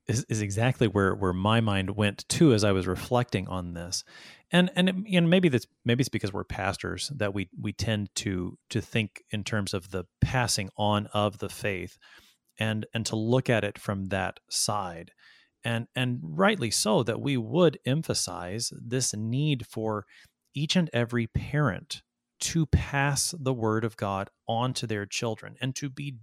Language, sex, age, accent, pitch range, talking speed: English, male, 30-49, American, 105-140 Hz, 180 wpm